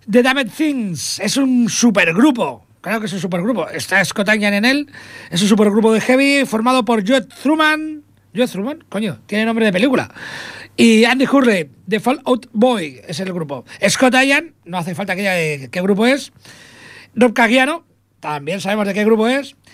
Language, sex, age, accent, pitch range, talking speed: Spanish, male, 40-59, Spanish, 185-250 Hz, 180 wpm